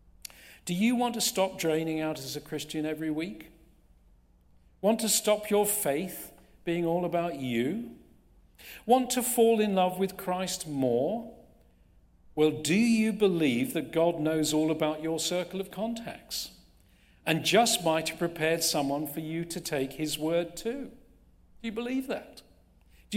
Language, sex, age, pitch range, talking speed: English, male, 50-69, 125-205 Hz, 155 wpm